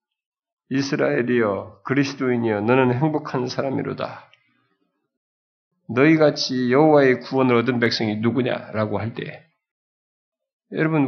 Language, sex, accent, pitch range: Korean, male, native, 110-160 Hz